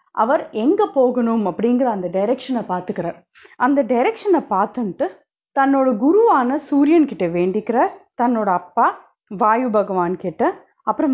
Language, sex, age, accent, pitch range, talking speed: Tamil, female, 30-49, native, 220-290 Hz, 115 wpm